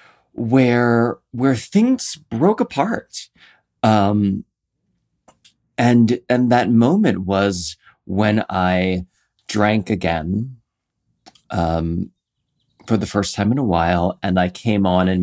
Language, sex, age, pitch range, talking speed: English, male, 30-49, 90-110 Hz, 110 wpm